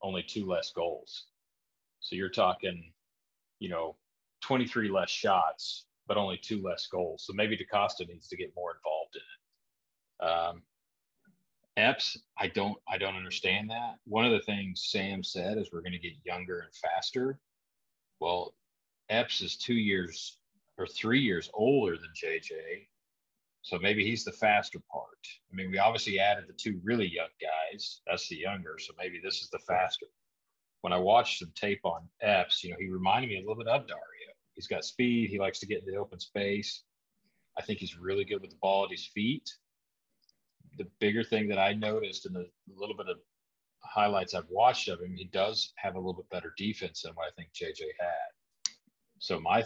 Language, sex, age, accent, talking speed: English, male, 40-59, American, 185 wpm